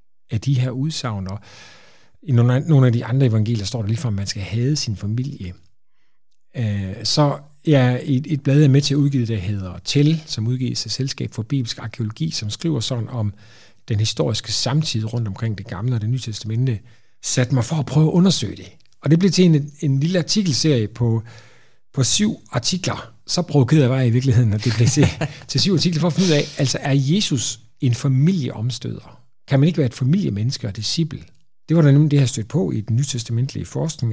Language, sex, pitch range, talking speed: Danish, male, 115-150 Hz, 215 wpm